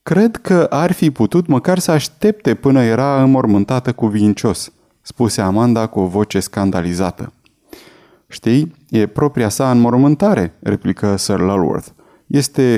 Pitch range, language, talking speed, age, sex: 100-135 Hz, Romanian, 130 wpm, 20-39, male